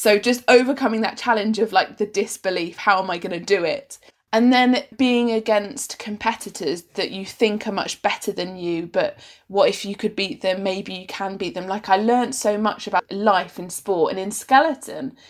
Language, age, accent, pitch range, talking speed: English, 20-39, British, 195-235 Hz, 210 wpm